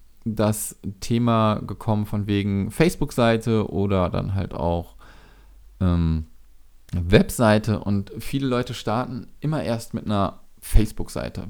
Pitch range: 100-125 Hz